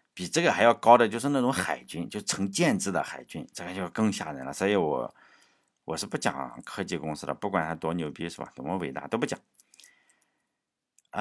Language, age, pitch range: Chinese, 50-69, 95-140 Hz